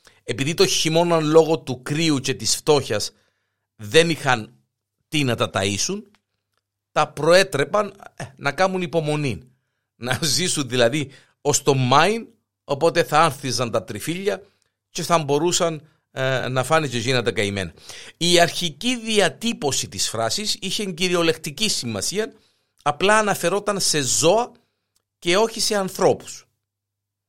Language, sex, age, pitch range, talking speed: Greek, male, 50-69, 115-175 Hz, 125 wpm